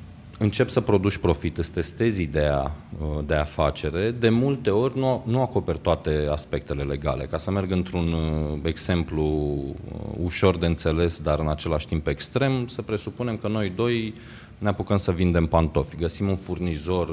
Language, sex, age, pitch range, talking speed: Romanian, male, 20-39, 80-115 Hz, 150 wpm